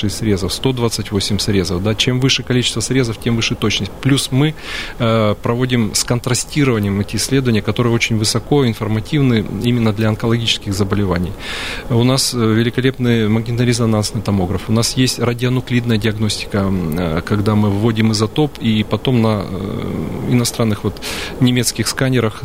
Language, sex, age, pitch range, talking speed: Russian, male, 30-49, 105-120 Hz, 130 wpm